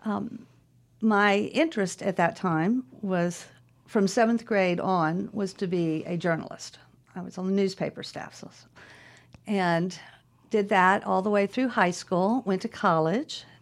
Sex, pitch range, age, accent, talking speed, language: female, 170-200 Hz, 50-69, American, 150 wpm, English